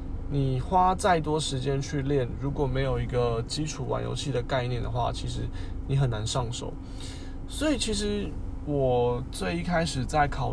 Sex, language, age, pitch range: male, Chinese, 20-39, 95-135 Hz